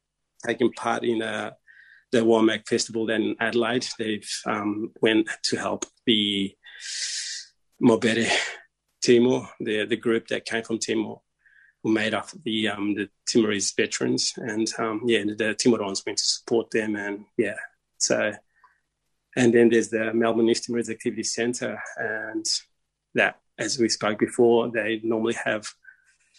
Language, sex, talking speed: English, male, 145 wpm